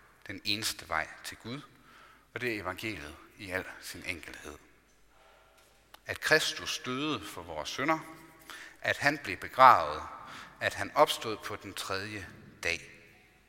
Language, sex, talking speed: Danish, male, 135 wpm